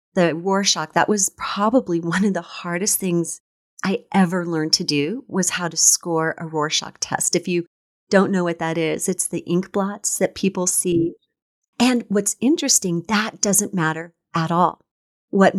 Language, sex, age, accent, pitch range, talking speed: English, female, 40-59, American, 165-200 Hz, 175 wpm